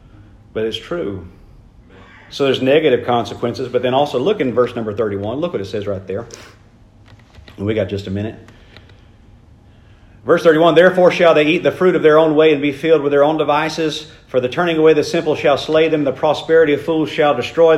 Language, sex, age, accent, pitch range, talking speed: English, male, 40-59, American, 110-155 Hz, 205 wpm